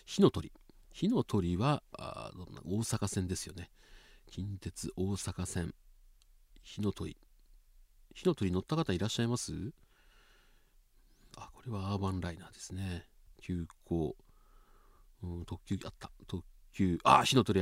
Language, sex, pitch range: Japanese, male, 90-130 Hz